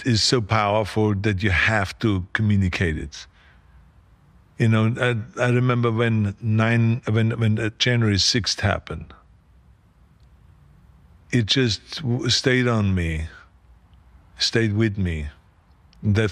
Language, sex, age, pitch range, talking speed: English, male, 50-69, 90-110 Hz, 110 wpm